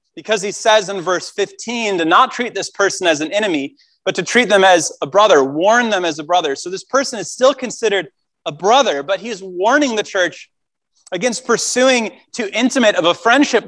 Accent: American